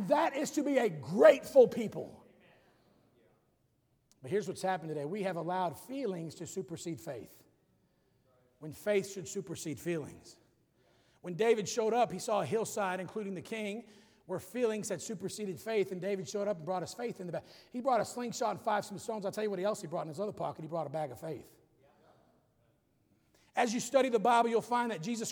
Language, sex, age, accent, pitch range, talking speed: English, male, 40-59, American, 200-270 Hz, 200 wpm